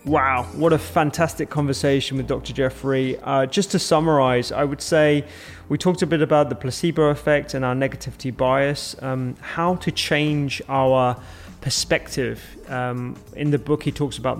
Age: 20-39